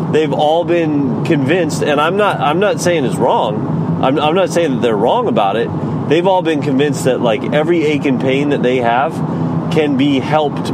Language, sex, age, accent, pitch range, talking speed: English, male, 30-49, American, 130-155 Hz, 205 wpm